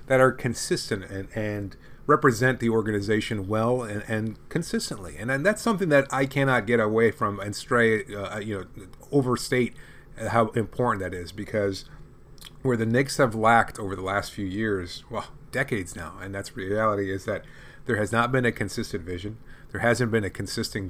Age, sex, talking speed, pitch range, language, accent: 30-49, male, 180 wpm, 105-130 Hz, English, American